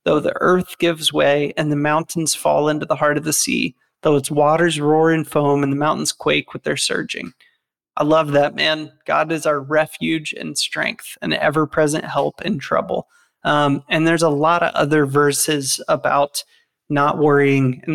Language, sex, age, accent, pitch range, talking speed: English, male, 30-49, American, 145-165 Hz, 185 wpm